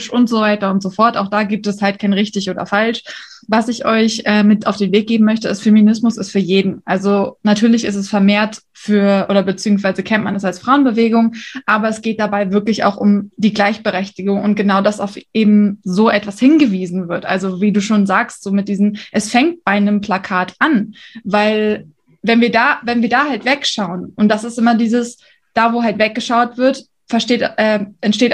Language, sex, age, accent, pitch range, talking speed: English, female, 20-39, German, 205-240 Hz, 205 wpm